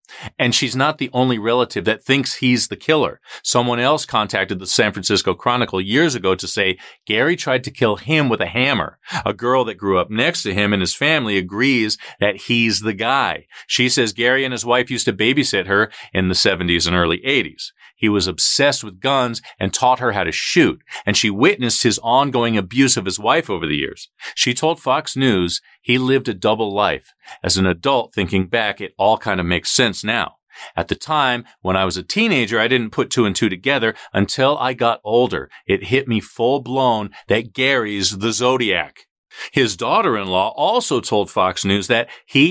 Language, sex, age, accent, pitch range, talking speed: English, male, 40-59, American, 100-135 Hz, 200 wpm